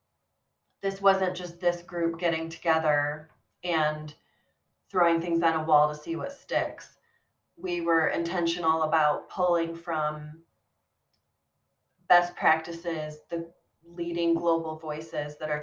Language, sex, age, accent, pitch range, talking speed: English, female, 30-49, American, 155-175 Hz, 120 wpm